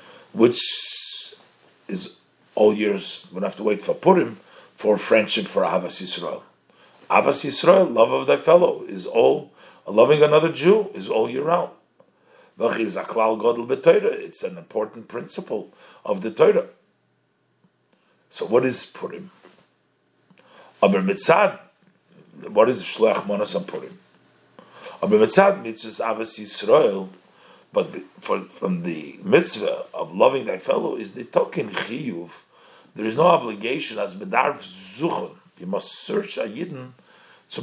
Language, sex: English, male